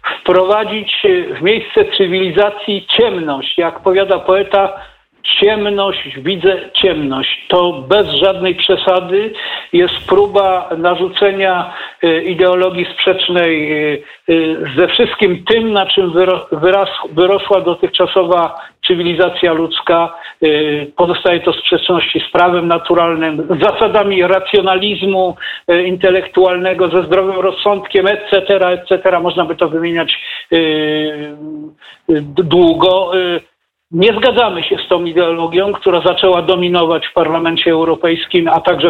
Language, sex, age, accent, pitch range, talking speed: Polish, male, 50-69, native, 175-200 Hz, 95 wpm